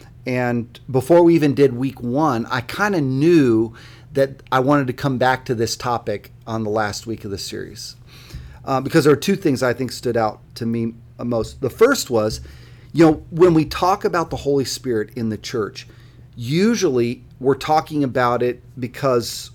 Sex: male